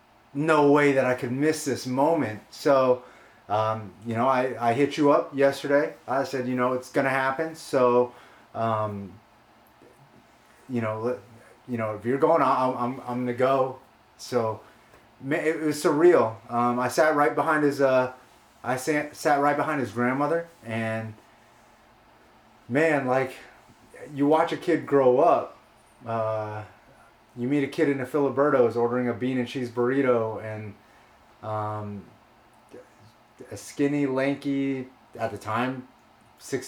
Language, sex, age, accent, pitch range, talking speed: English, male, 30-49, American, 120-145 Hz, 150 wpm